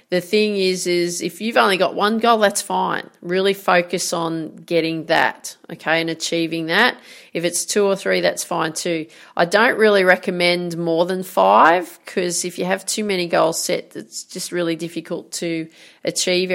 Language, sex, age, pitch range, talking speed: English, female, 30-49, 165-195 Hz, 180 wpm